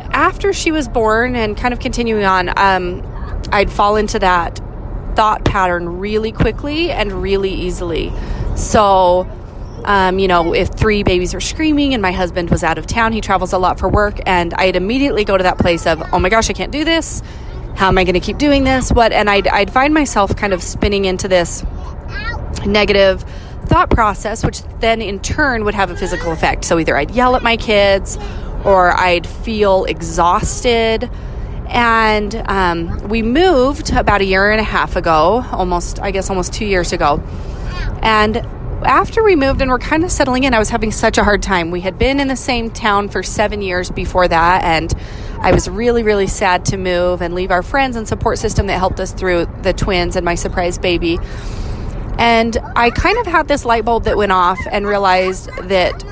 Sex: female